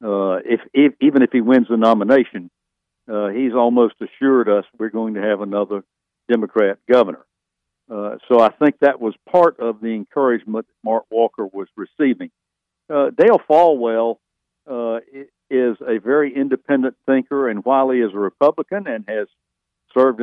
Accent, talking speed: American, 155 wpm